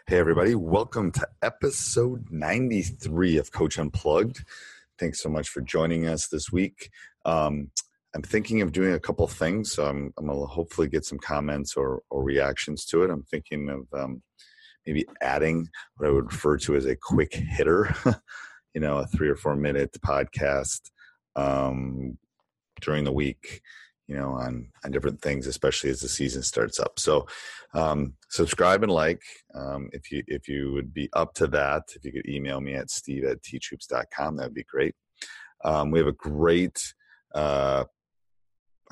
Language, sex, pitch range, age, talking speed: English, male, 70-75 Hz, 30-49, 170 wpm